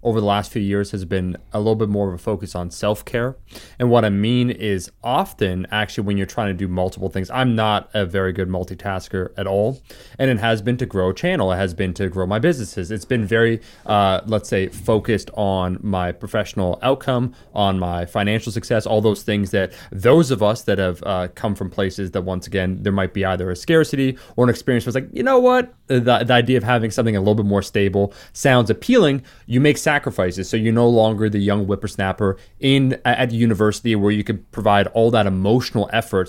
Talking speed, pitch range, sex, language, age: 220 wpm, 95-120 Hz, male, English, 20-39